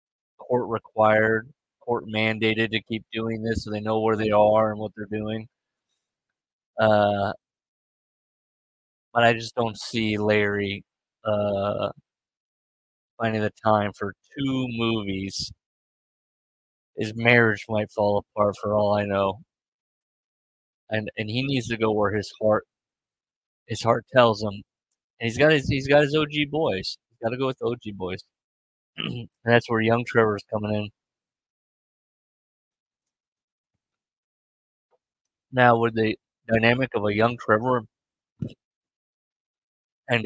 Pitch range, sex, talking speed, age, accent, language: 105-115 Hz, male, 130 wpm, 20-39, American, English